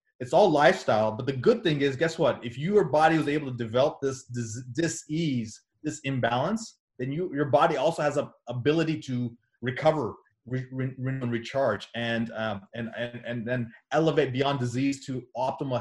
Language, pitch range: English, 125-160 Hz